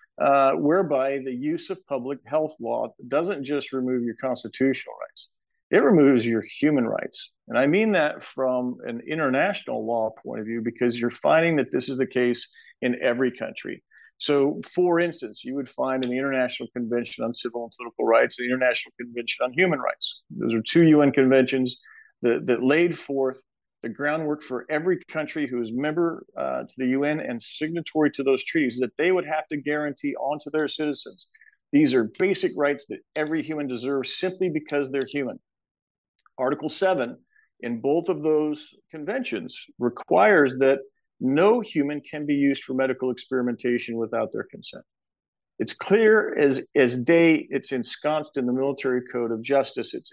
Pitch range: 125-155 Hz